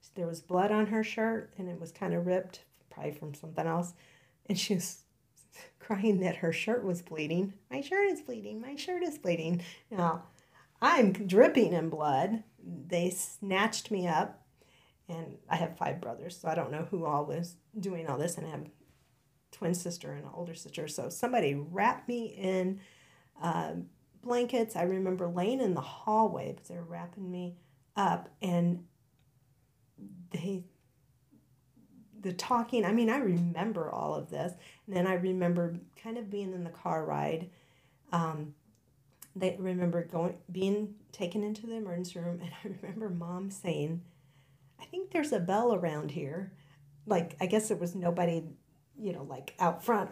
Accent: American